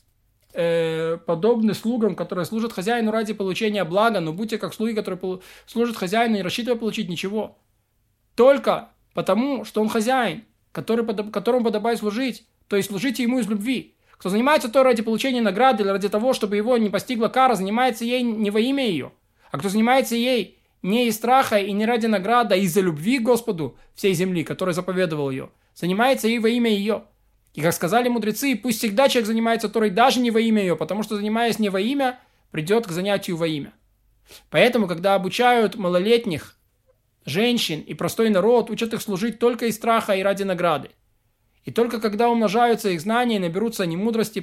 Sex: male